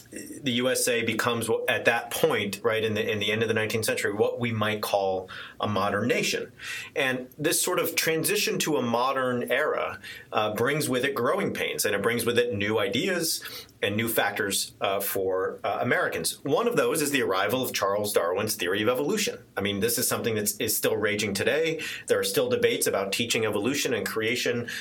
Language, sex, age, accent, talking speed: English, male, 40-59, American, 200 wpm